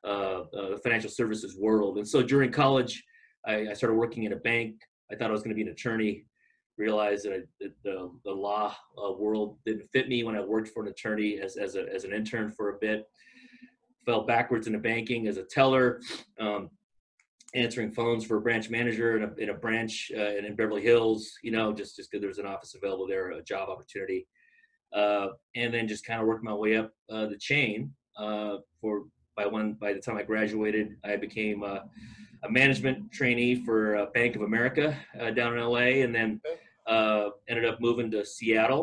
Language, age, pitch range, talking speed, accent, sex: English, 30-49, 105-120 Hz, 200 wpm, American, male